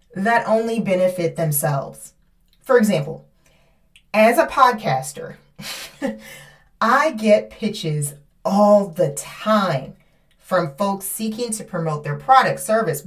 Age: 30-49